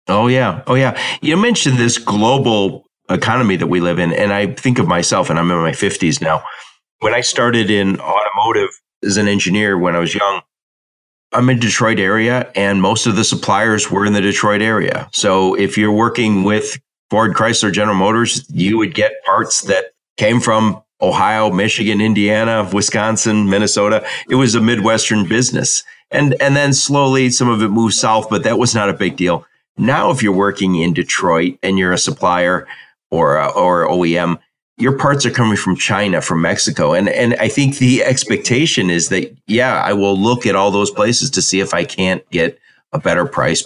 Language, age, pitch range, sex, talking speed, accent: English, 40-59, 95-120 Hz, male, 190 wpm, American